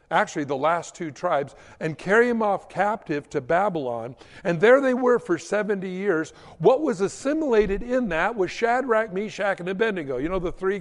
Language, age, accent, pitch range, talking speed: English, 60-79, American, 155-220 Hz, 185 wpm